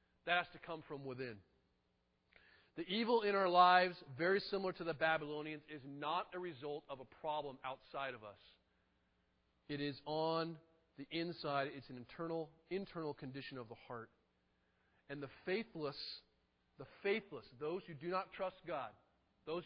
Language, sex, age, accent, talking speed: English, male, 40-59, American, 155 wpm